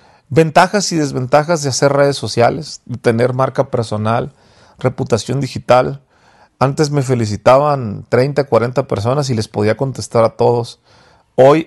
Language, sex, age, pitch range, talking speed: English, male, 40-59, 115-140 Hz, 135 wpm